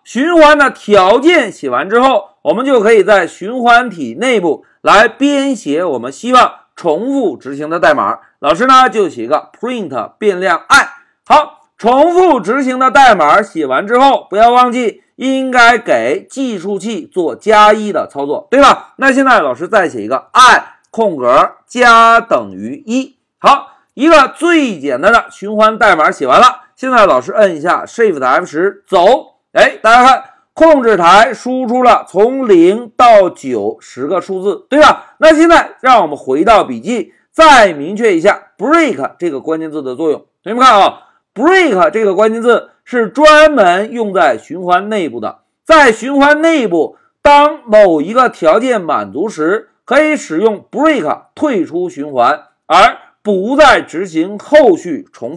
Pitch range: 220-315 Hz